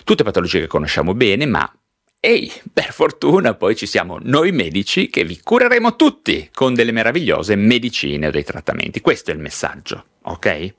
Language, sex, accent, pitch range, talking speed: Italian, male, native, 95-130 Hz, 165 wpm